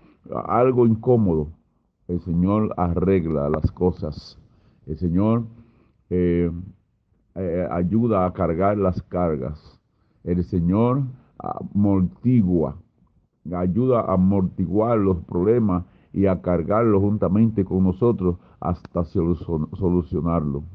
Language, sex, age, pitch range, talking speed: Spanish, male, 50-69, 90-110 Hz, 95 wpm